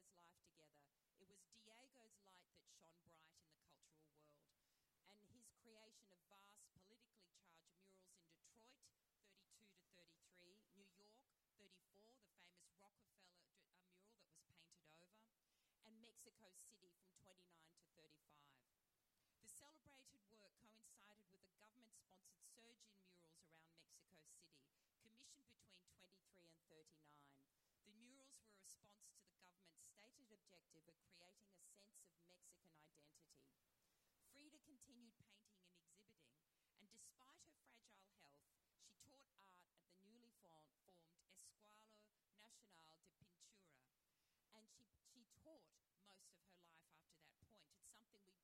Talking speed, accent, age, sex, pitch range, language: 140 wpm, Australian, 40-59, female, 165-215 Hz, English